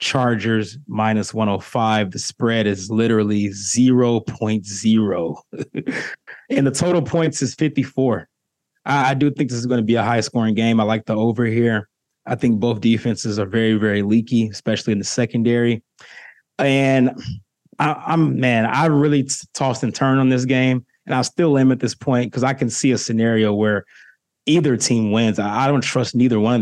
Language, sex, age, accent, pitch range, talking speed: English, male, 20-39, American, 110-145 Hz, 185 wpm